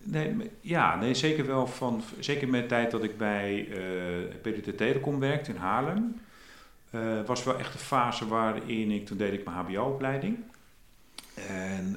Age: 40-59